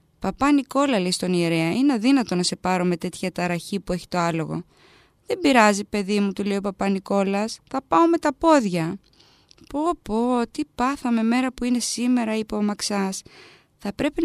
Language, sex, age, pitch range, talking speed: Greek, female, 20-39, 195-260 Hz, 180 wpm